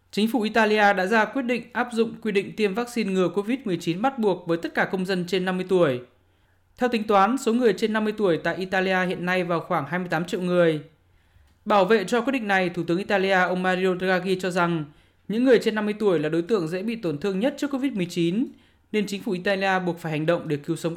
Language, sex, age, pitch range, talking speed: Vietnamese, male, 20-39, 175-220 Hz, 235 wpm